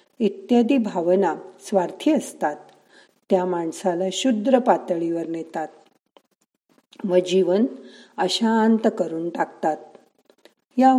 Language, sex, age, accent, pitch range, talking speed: Marathi, female, 50-69, native, 180-225 Hz, 80 wpm